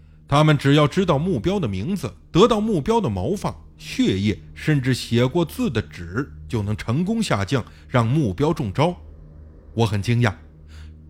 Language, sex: Chinese, male